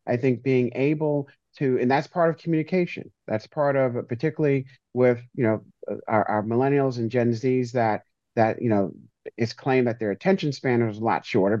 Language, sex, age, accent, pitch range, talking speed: English, male, 40-59, American, 110-135 Hz, 190 wpm